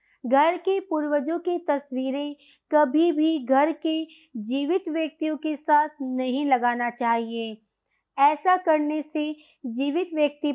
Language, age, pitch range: Hindi, 20-39, 270-335 Hz